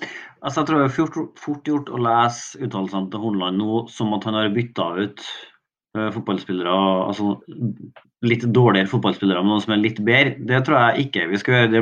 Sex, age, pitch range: male, 30-49, 110-135 Hz